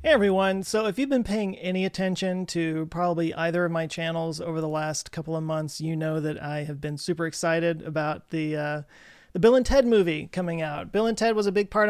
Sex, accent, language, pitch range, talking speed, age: male, American, English, 165-200 Hz, 220 wpm, 30-49